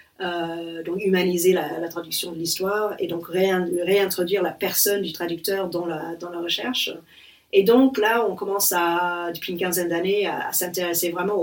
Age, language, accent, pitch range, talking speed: 40-59, French, French, 170-215 Hz, 185 wpm